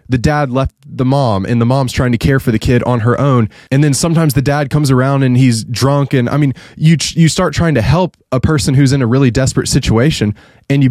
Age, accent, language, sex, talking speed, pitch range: 20-39, American, English, male, 255 wpm, 115-150 Hz